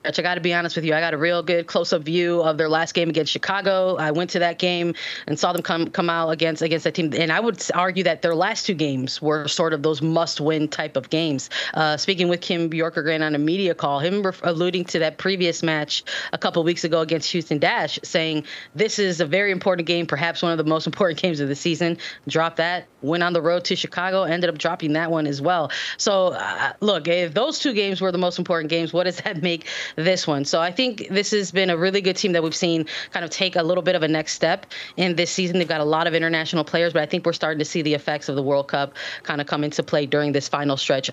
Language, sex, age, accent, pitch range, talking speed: English, female, 20-39, American, 155-180 Hz, 260 wpm